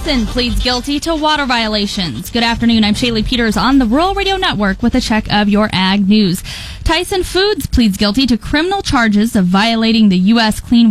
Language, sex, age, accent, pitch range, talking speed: English, female, 10-29, American, 210-270 Hz, 195 wpm